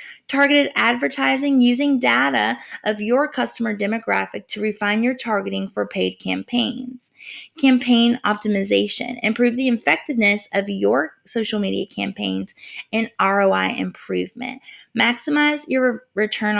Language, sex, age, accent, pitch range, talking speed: English, female, 20-39, American, 195-275 Hz, 110 wpm